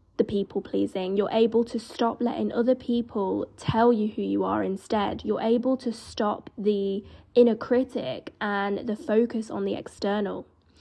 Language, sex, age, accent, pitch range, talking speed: English, female, 10-29, British, 215-255 Hz, 160 wpm